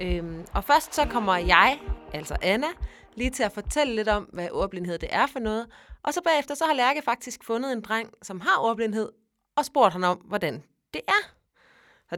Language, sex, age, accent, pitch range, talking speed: Danish, female, 30-49, native, 180-240 Hz, 200 wpm